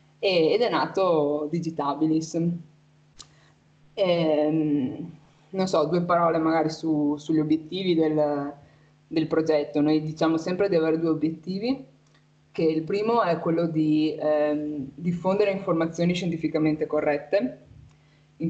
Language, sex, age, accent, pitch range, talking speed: Italian, female, 20-39, native, 150-170 Hz, 105 wpm